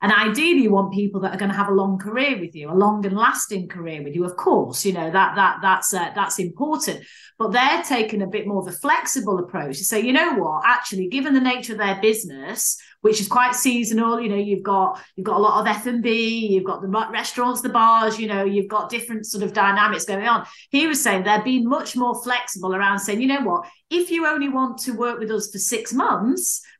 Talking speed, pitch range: 245 wpm, 200-255 Hz